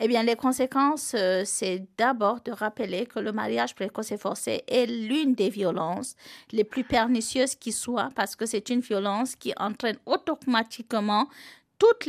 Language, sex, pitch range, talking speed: French, female, 200-250 Hz, 160 wpm